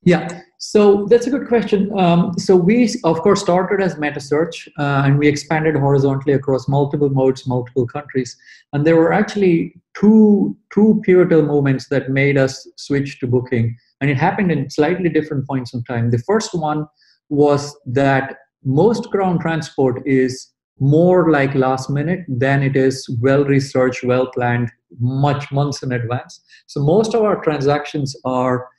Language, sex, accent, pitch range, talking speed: English, male, Indian, 130-165 Hz, 155 wpm